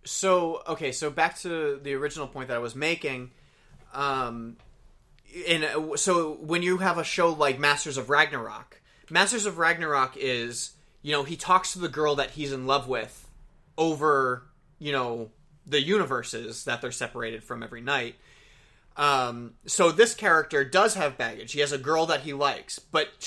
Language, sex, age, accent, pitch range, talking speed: English, male, 30-49, American, 130-170 Hz, 170 wpm